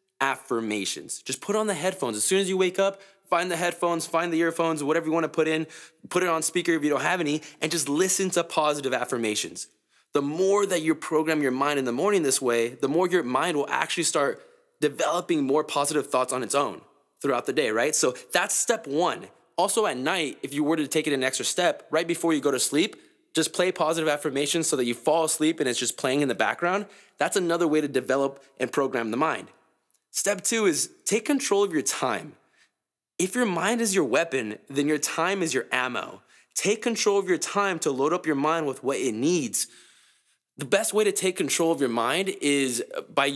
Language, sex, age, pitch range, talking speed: English, male, 20-39, 140-195 Hz, 225 wpm